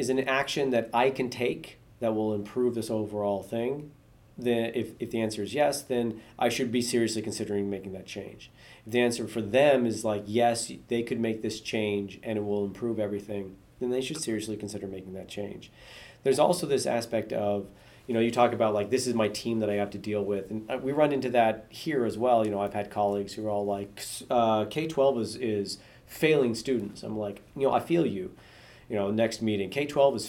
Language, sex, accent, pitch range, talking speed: English, male, American, 105-125 Hz, 225 wpm